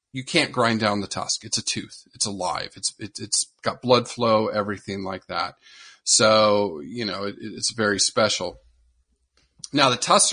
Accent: American